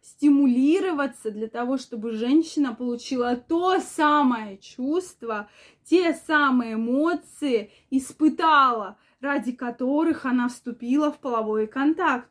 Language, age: Russian, 20-39